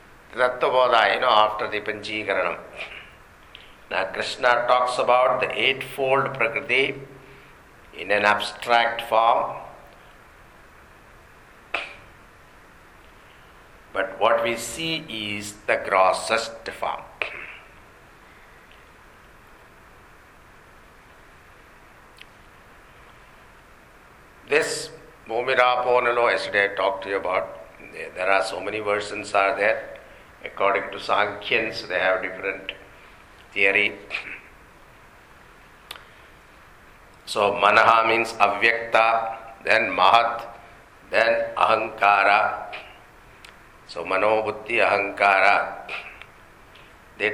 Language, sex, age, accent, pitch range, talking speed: English, male, 60-79, Indian, 105-120 Hz, 75 wpm